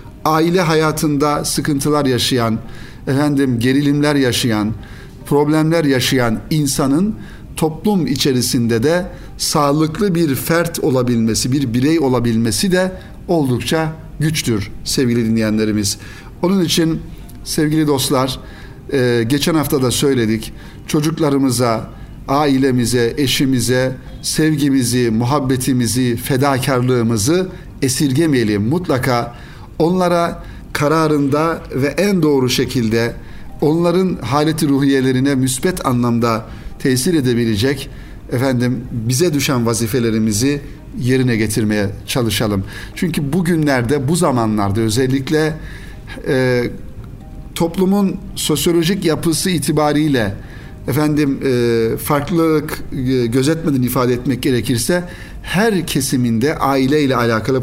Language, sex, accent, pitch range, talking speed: Turkish, male, native, 120-155 Hz, 85 wpm